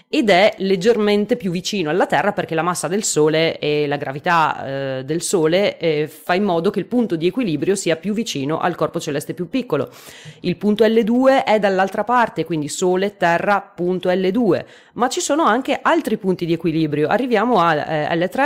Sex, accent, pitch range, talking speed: female, native, 165-240 Hz, 185 wpm